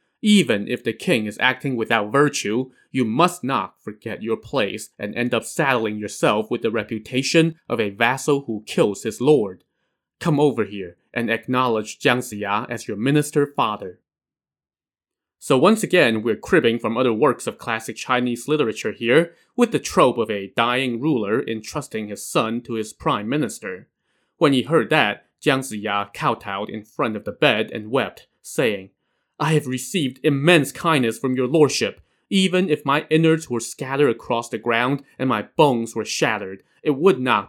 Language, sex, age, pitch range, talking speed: English, male, 20-39, 110-150 Hz, 170 wpm